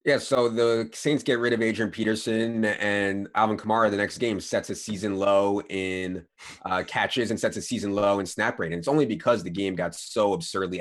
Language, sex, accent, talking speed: English, male, American, 215 wpm